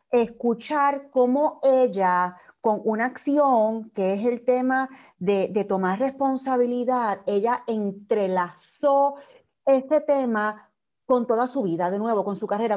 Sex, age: female, 40-59